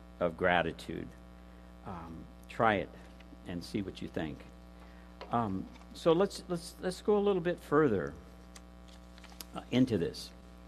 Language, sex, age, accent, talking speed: English, male, 60-79, American, 130 wpm